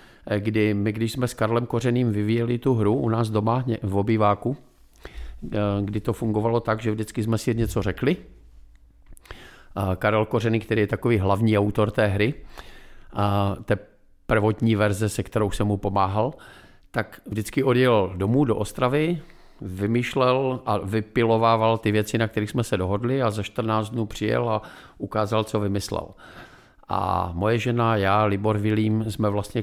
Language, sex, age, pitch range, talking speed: Czech, male, 50-69, 95-115 Hz, 150 wpm